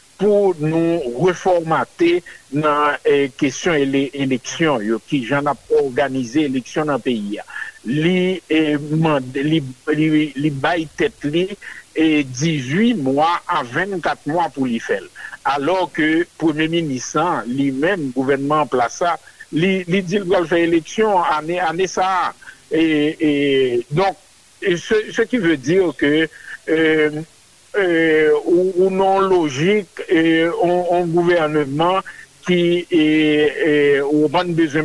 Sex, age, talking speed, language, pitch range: male, 60-79, 105 wpm, French, 140-175 Hz